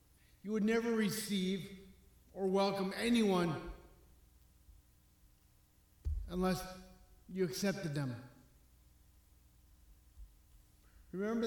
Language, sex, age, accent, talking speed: English, male, 50-69, American, 65 wpm